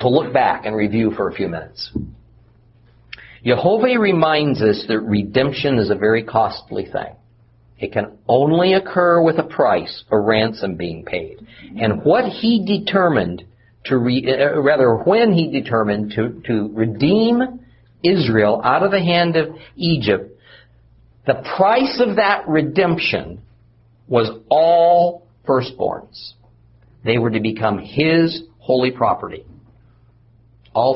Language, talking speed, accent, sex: English, 130 wpm, American, male